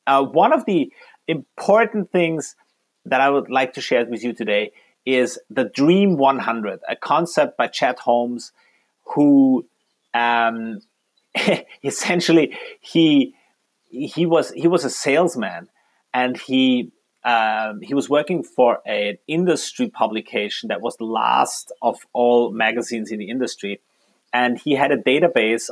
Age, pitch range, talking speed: 30-49, 115-165 Hz, 140 wpm